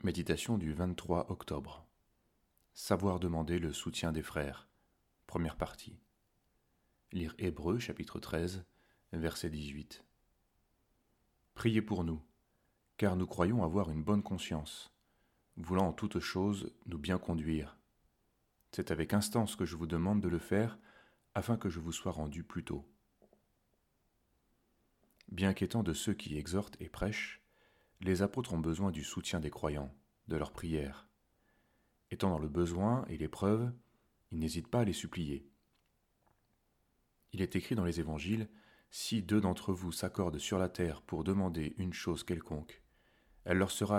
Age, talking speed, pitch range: 30-49, 145 wpm, 80-100 Hz